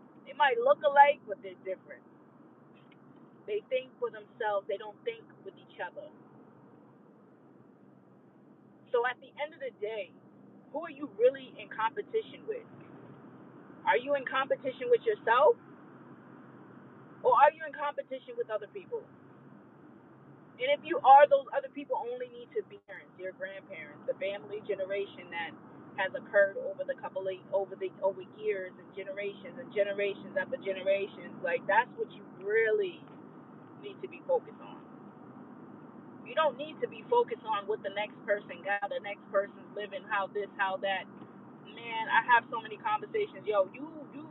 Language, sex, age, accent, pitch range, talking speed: English, female, 30-49, American, 200-305 Hz, 160 wpm